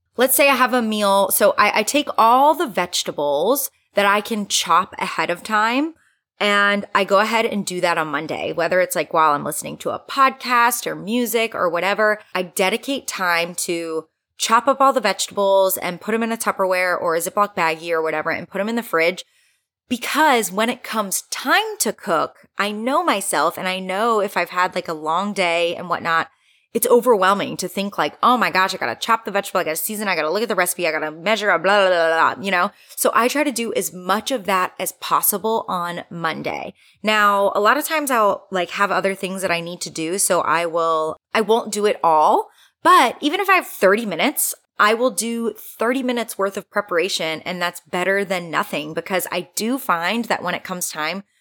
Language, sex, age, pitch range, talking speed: English, female, 20-39, 180-230 Hz, 225 wpm